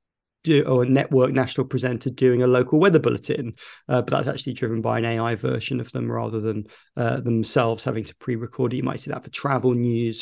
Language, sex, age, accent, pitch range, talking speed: English, male, 40-59, British, 125-140 Hz, 210 wpm